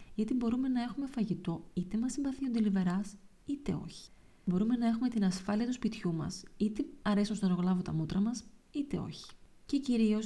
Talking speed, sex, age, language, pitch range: 180 wpm, female, 20-39, Greek, 185-230 Hz